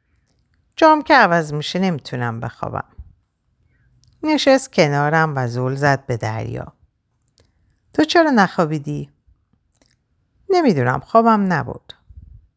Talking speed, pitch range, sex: 90 wpm, 115-185 Hz, female